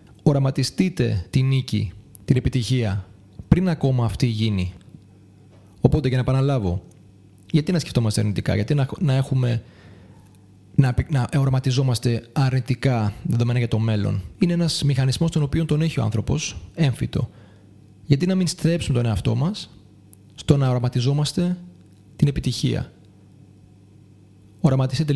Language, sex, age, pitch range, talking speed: Greek, male, 30-49, 105-150 Hz, 120 wpm